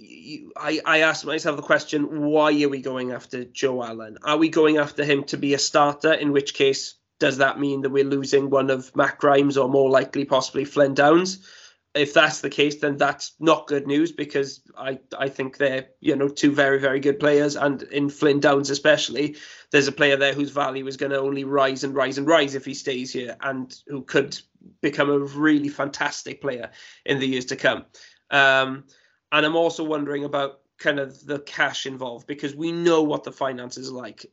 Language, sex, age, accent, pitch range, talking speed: English, male, 20-39, British, 140-150 Hz, 205 wpm